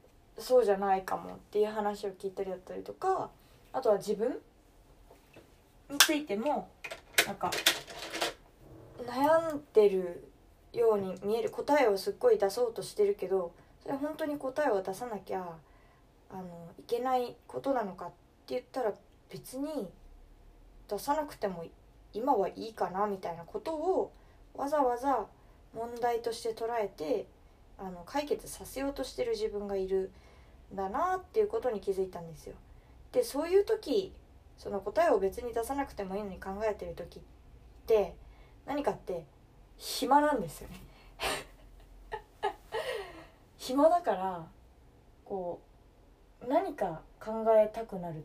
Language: Japanese